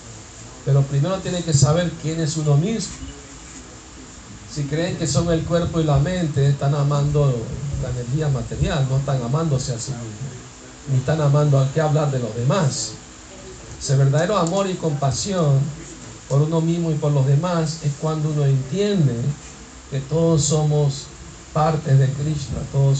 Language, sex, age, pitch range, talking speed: Spanish, male, 50-69, 125-155 Hz, 160 wpm